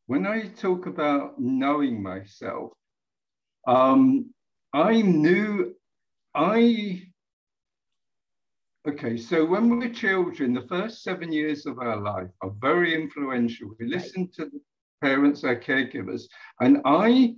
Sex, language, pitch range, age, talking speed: male, English, 130-205 Hz, 60-79, 115 wpm